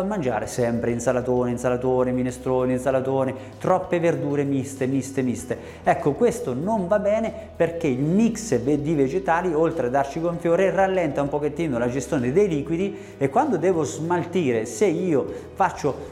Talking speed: 150 wpm